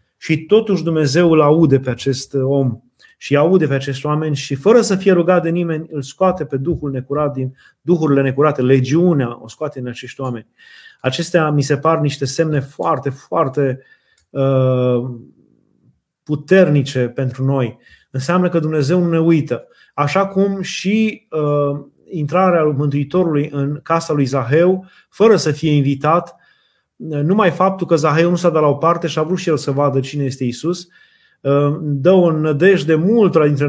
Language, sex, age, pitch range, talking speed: Romanian, male, 30-49, 135-170 Hz, 165 wpm